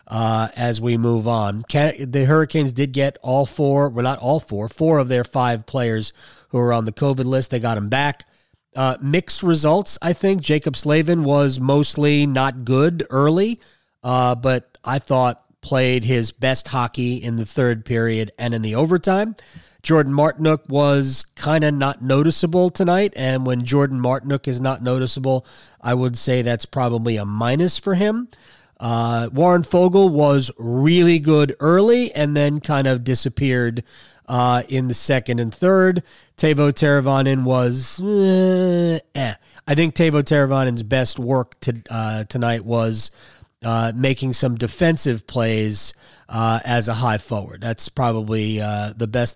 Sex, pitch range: male, 120-150 Hz